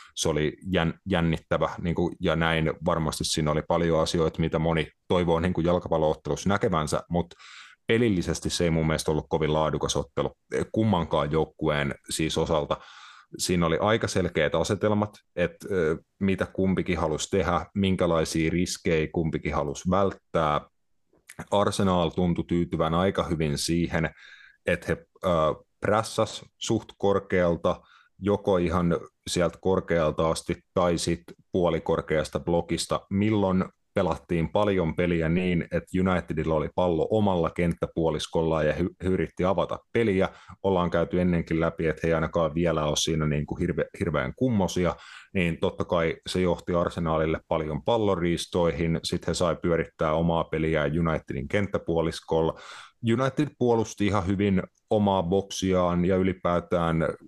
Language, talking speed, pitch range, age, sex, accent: Finnish, 130 wpm, 80-95 Hz, 30-49, male, native